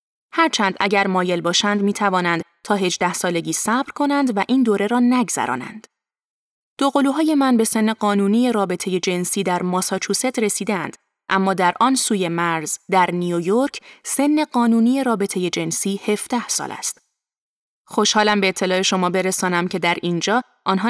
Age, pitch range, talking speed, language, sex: 20-39, 180-230 Hz, 145 wpm, Persian, female